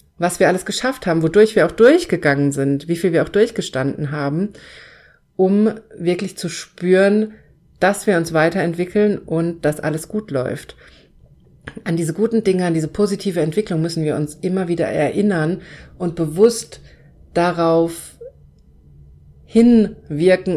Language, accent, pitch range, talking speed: German, German, 155-185 Hz, 135 wpm